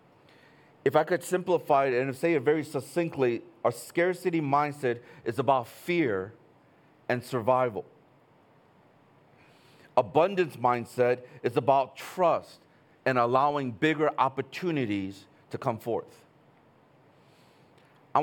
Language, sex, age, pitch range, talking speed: English, male, 40-59, 130-160 Hz, 100 wpm